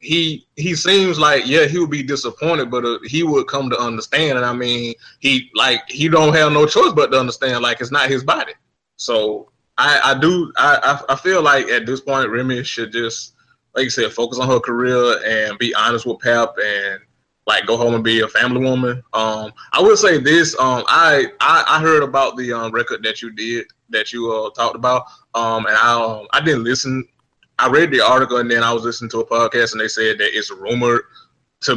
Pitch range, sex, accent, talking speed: 115-135 Hz, male, American, 220 wpm